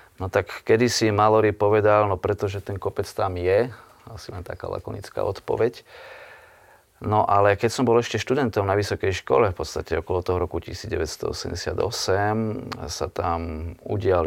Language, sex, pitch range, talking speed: Slovak, male, 85-100 Hz, 145 wpm